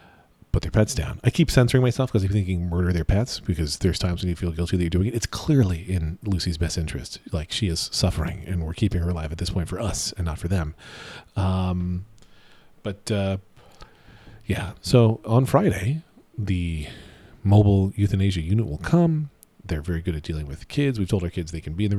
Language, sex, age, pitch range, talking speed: English, male, 40-59, 85-110 Hz, 215 wpm